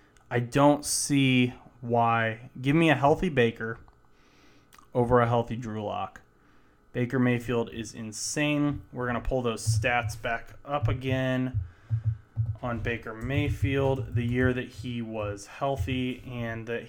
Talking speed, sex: 140 wpm, male